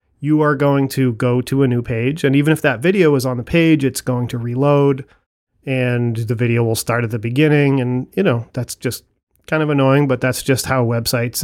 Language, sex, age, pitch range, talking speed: English, male, 40-59, 125-150 Hz, 225 wpm